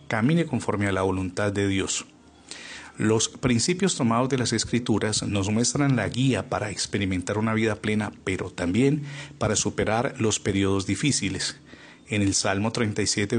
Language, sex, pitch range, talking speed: Spanish, male, 100-125 Hz, 150 wpm